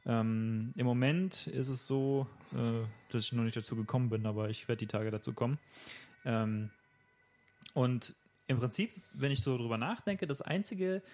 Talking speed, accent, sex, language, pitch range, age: 170 wpm, German, male, German, 115-135 Hz, 30-49